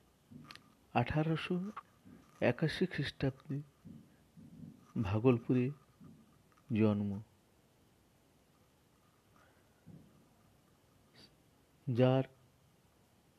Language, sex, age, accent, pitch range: Bengali, male, 50-69, native, 115-140 Hz